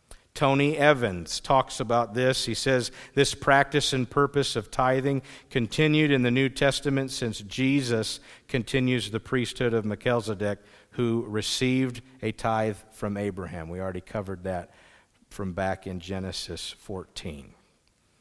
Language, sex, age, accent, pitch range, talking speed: English, male, 50-69, American, 110-140 Hz, 130 wpm